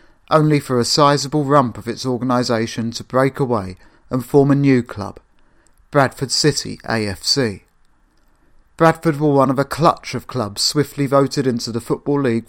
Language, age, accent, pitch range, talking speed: English, 40-59, British, 115-145 Hz, 160 wpm